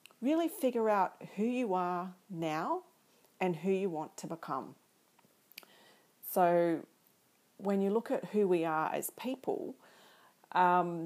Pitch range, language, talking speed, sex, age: 165-215 Hz, English, 130 wpm, female, 40-59